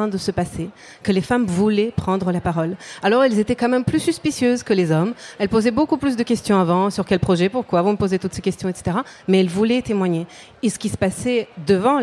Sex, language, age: female, French, 40-59